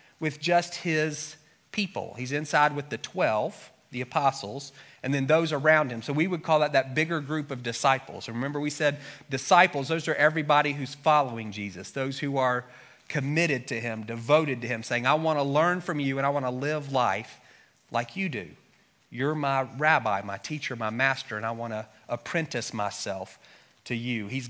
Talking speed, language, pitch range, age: 180 wpm, English, 120-155 Hz, 40-59